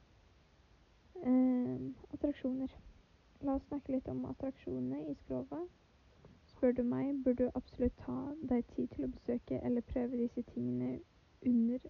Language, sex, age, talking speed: Spanish, female, 20-39, 130 wpm